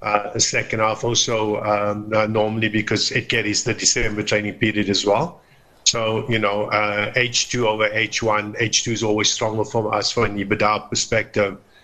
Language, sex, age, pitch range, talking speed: English, male, 50-69, 100-110 Hz, 170 wpm